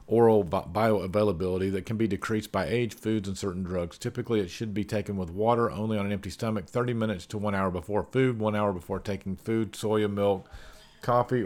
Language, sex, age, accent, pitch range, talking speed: English, male, 40-59, American, 95-115 Hz, 205 wpm